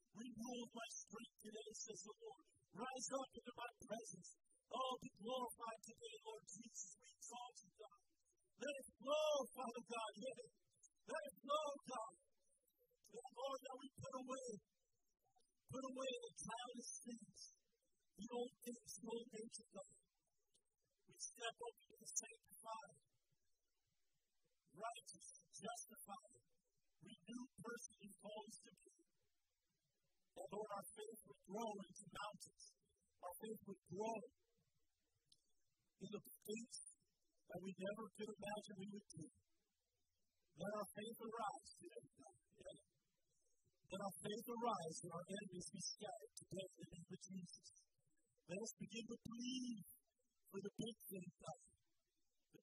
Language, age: English, 50-69